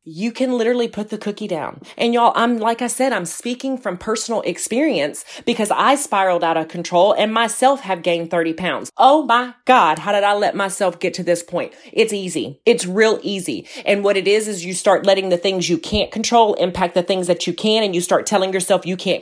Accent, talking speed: American, 230 wpm